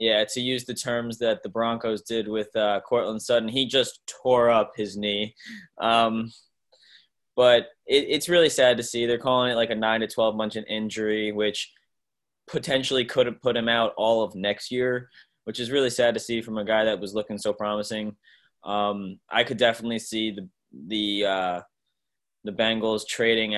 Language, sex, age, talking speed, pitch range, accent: English, male, 20-39, 180 wpm, 105-115 Hz, American